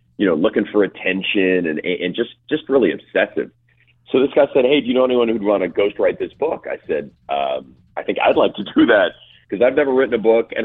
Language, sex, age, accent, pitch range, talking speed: English, male, 40-59, American, 85-120 Hz, 250 wpm